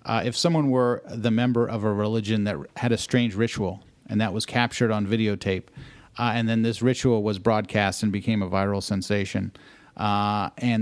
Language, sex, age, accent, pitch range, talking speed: English, male, 40-59, American, 105-125 Hz, 190 wpm